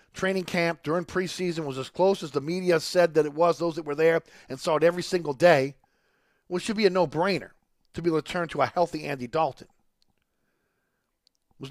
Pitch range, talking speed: 155-235 Hz, 215 wpm